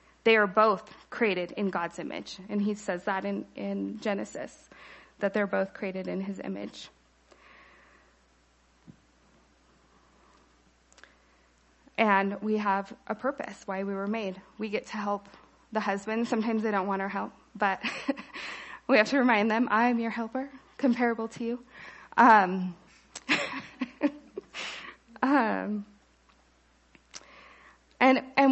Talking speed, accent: 120 wpm, American